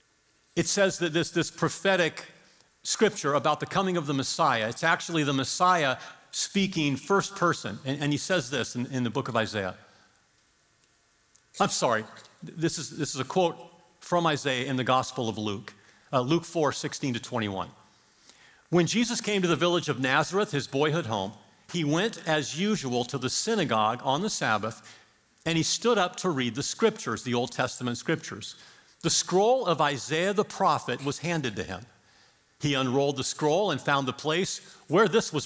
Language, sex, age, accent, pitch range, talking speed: English, male, 50-69, American, 120-170 Hz, 180 wpm